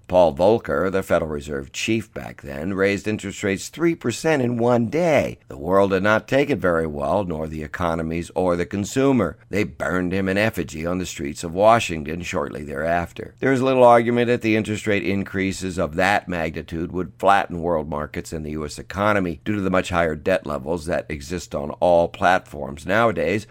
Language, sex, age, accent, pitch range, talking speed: English, male, 50-69, American, 80-105 Hz, 190 wpm